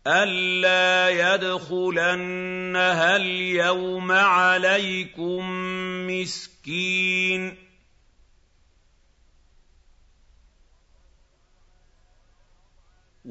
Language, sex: Arabic, male